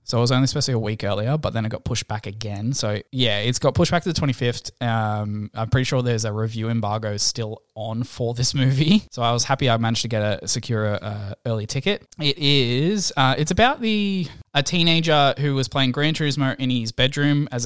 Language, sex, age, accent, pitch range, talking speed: English, male, 20-39, Australian, 115-140 Hz, 230 wpm